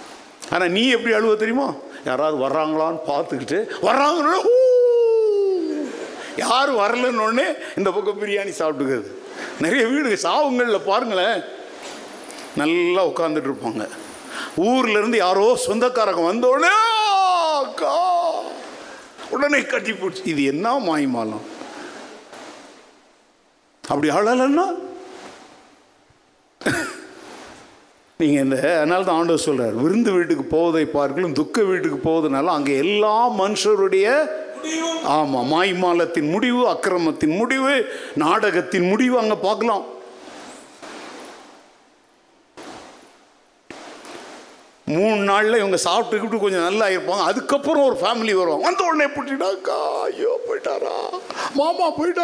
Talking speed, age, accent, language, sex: 55 wpm, 50-69, native, Tamil, male